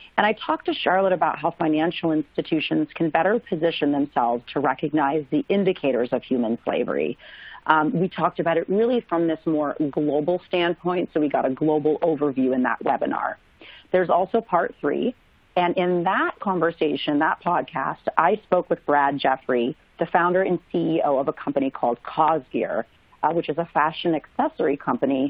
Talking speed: 170 wpm